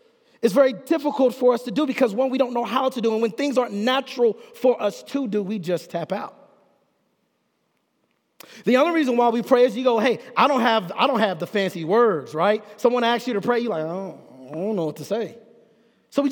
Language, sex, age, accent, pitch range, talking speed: English, male, 30-49, American, 225-295 Hz, 235 wpm